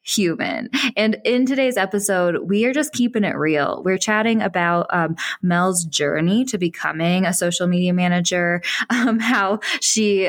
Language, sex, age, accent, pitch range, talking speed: English, female, 20-39, American, 170-220 Hz, 150 wpm